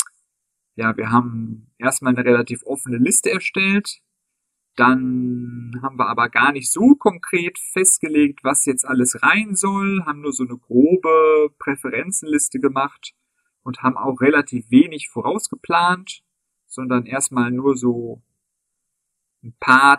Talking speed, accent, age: 125 wpm, German, 40-59